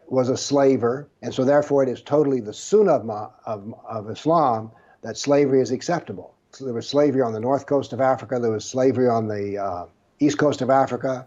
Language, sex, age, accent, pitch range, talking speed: English, male, 60-79, American, 120-140 Hz, 200 wpm